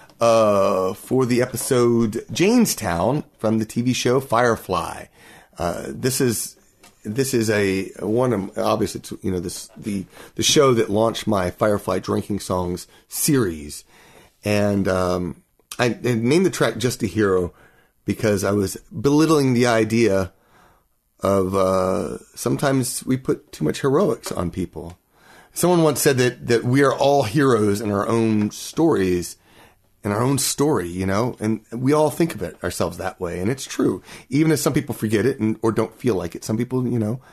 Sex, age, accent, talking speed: male, 30-49, American, 170 wpm